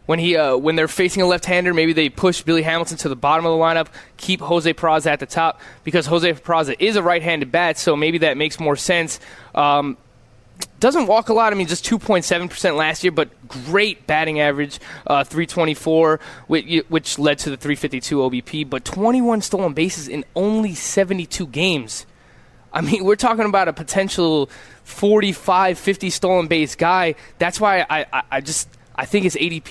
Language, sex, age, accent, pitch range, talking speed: English, male, 20-39, American, 150-180 Hz, 185 wpm